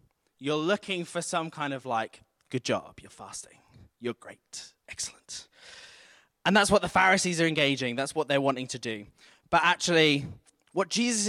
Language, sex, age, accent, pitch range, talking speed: English, male, 20-39, British, 125-165 Hz, 165 wpm